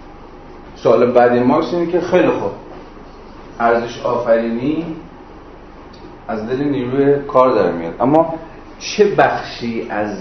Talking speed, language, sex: 110 wpm, Persian, male